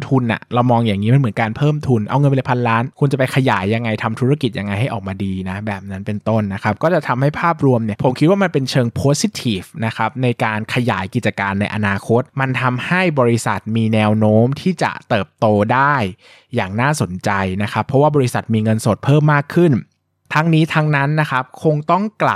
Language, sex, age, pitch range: Thai, male, 20-39, 110-145 Hz